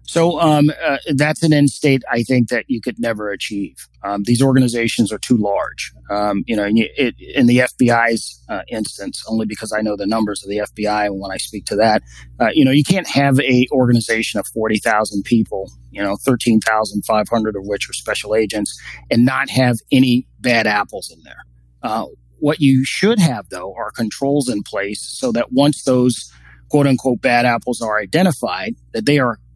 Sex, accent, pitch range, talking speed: male, American, 105-125 Hz, 195 wpm